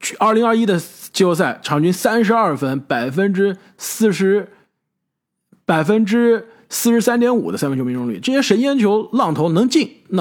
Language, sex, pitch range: Chinese, male, 140-225 Hz